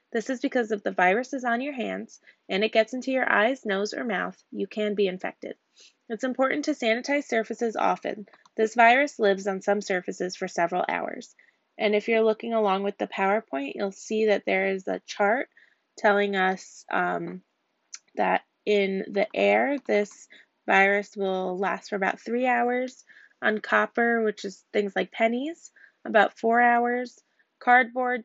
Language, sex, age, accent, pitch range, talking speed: English, female, 20-39, American, 190-235 Hz, 170 wpm